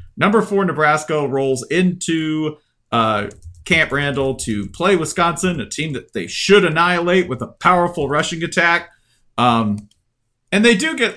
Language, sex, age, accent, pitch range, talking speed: English, male, 40-59, American, 125-175 Hz, 145 wpm